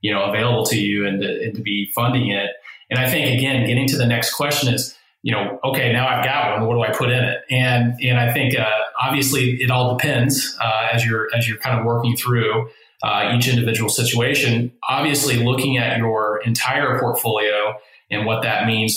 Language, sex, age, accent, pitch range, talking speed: English, male, 30-49, American, 110-130 Hz, 210 wpm